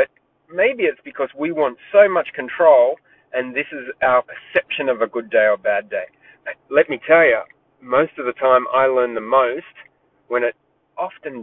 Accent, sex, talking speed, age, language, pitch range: Australian, male, 185 wpm, 30-49, English, 130-175 Hz